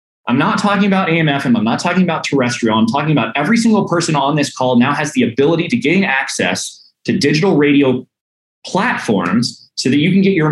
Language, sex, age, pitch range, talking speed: English, male, 30-49, 120-185 Hz, 205 wpm